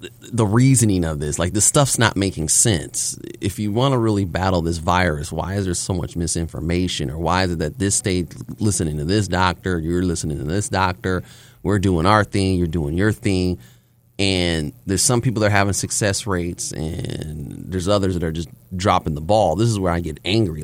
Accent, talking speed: American, 210 wpm